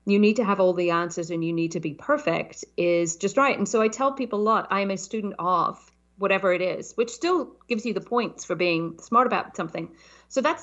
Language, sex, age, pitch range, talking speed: English, female, 40-59, 175-220 Hz, 250 wpm